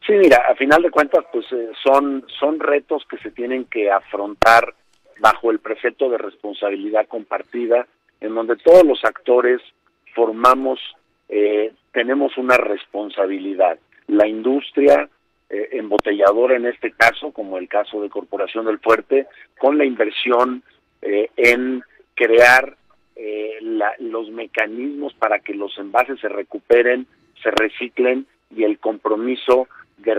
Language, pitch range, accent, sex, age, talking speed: Spanish, 105-125 Hz, Mexican, male, 50-69, 135 wpm